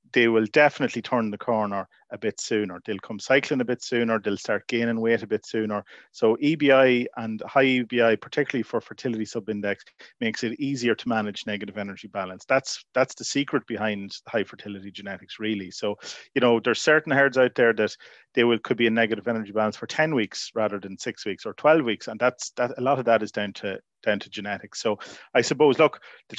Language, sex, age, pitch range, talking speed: English, male, 30-49, 110-130 Hz, 210 wpm